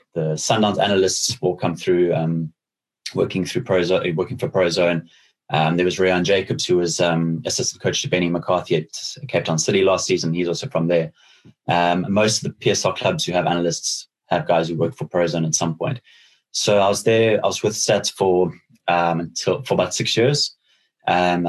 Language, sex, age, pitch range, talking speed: English, male, 20-39, 85-95 Hz, 195 wpm